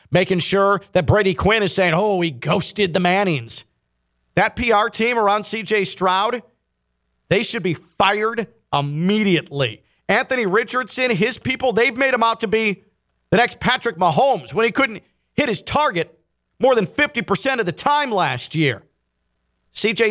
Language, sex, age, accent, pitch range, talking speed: English, male, 40-59, American, 155-210 Hz, 155 wpm